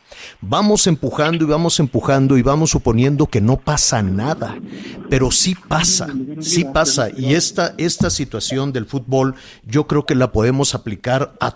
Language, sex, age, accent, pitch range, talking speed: Spanish, male, 50-69, Mexican, 115-155 Hz, 155 wpm